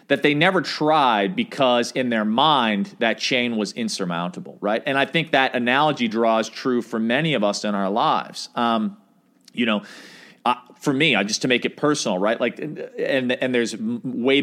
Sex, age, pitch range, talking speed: male, 40-59, 100-140 Hz, 185 wpm